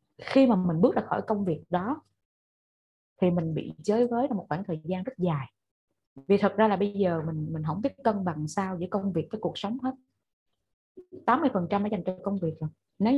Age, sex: 20-39, female